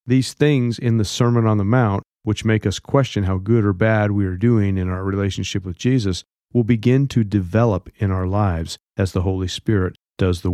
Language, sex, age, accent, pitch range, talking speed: English, male, 40-59, American, 95-120 Hz, 210 wpm